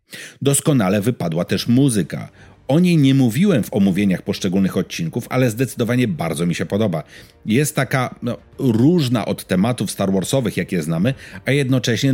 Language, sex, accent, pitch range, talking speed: Polish, male, native, 100-135 Hz, 150 wpm